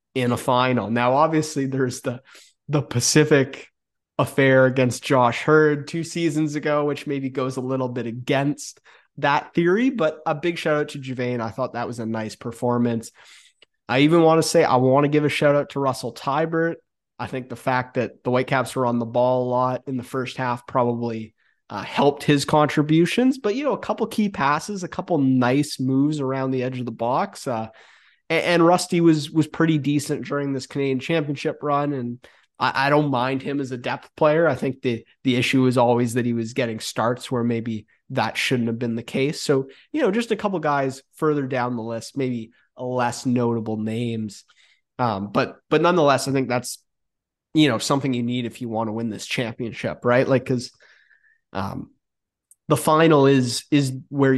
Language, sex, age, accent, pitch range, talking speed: English, male, 30-49, American, 120-150 Hz, 195 wpm